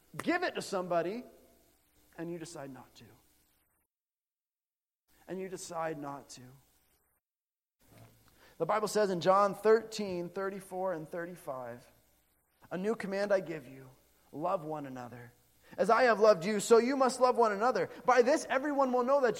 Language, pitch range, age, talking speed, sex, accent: English, 150-230 Hz, 30-49, 150 wpm, male, American